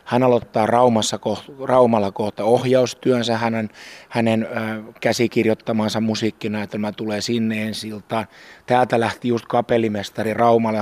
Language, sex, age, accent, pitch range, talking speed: Finnish, male, 30-49, native, 110-135 Hz, 105 wpm